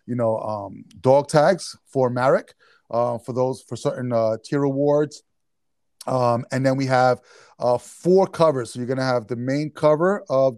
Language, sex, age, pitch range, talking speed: English, male, 30-49, 115-140 Hz, 180 wpm